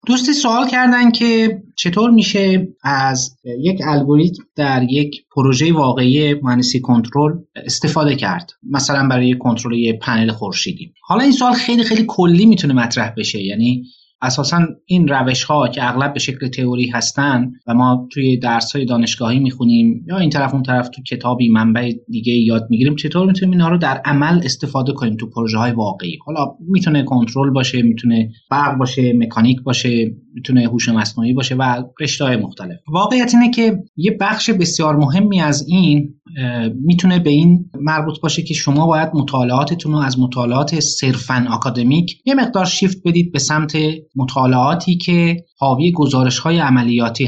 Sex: male